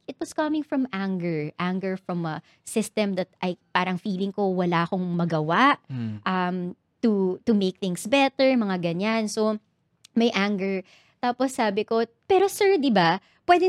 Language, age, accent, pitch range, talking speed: Filipino, 20-39, native, 190-280 Hz, 160 wpm